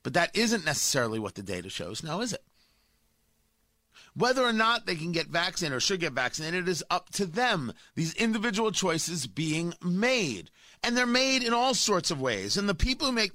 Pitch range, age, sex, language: 155-230 Hz, 40-59, male, English